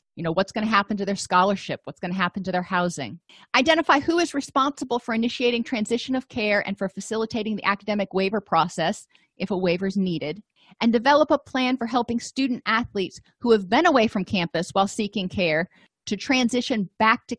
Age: 30-49